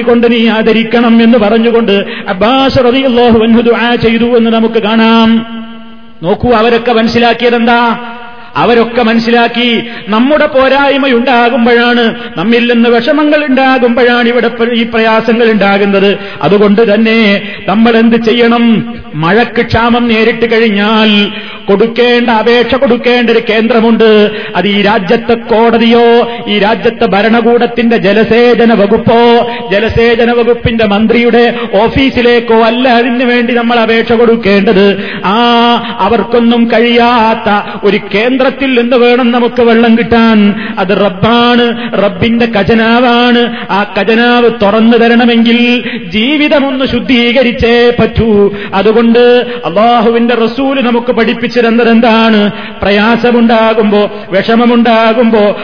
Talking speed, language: 95 wpm, Malayalam